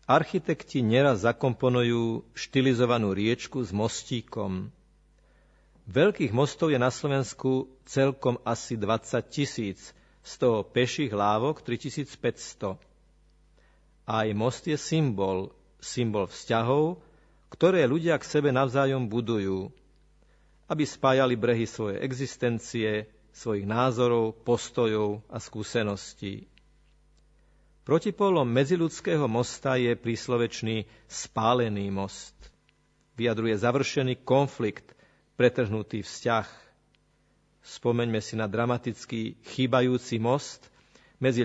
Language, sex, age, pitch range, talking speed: Slovak, male, 50-69, 110-135 Hz, 90 wpm